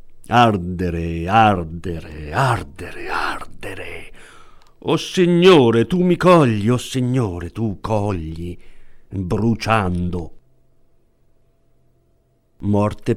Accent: native